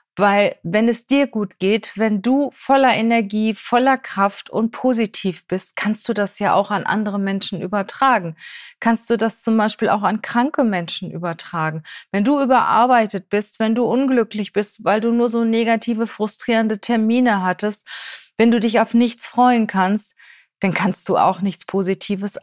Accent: German